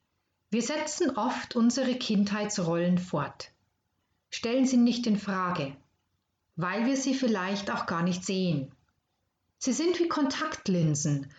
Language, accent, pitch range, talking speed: German, German, 150-230 Hz, 120 wpm